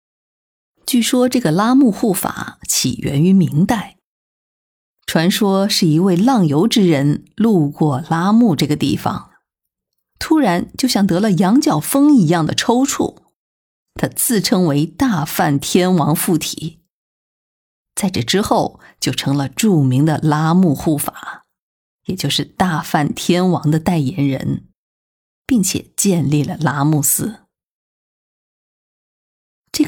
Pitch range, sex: 150-205 Hz, female